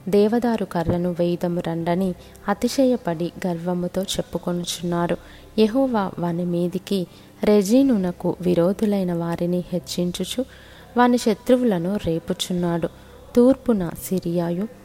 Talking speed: 75 wpm